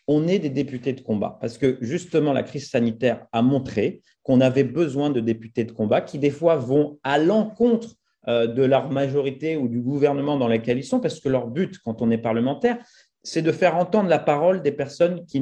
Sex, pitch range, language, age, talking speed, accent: male, 125-170 Hz, French, 40-59, 210 wpm, French